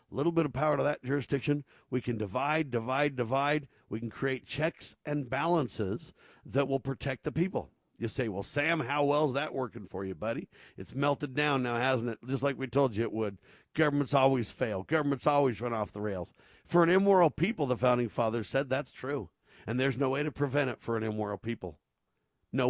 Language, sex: English, male